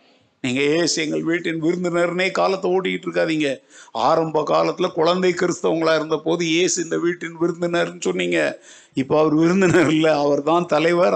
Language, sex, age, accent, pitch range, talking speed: Tamil, male, 50-69, native, 155-235 Hz, 135 wpm